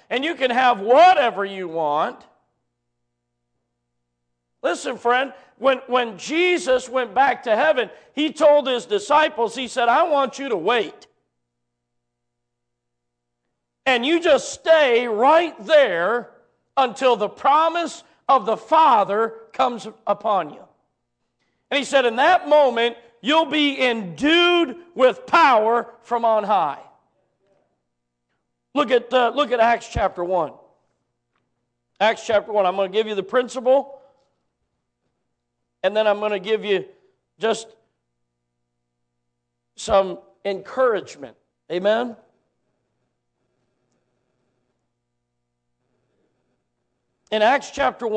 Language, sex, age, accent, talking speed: English, male, 50-69, American, 110 wpm